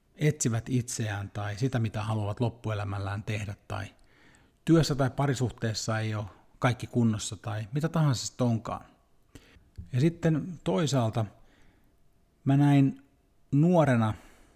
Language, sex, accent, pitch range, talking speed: Finnish, male, native, 110-130 Hz, 110 wpm